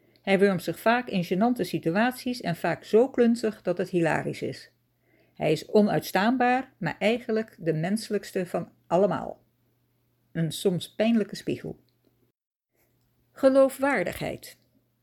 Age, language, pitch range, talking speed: 60-79, Dutch, 165-225 Hz, 115 wpm